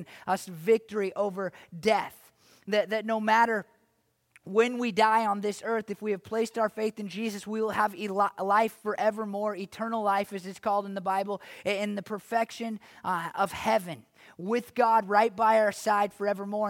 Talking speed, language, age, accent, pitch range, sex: 175 wpm, English, 20-39, American, 205-245 Hz, male